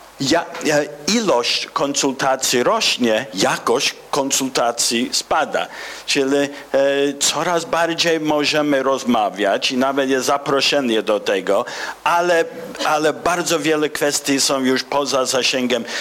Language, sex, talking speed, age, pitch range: Polish, male, 110 wpm, 50-69, 125-160 Hz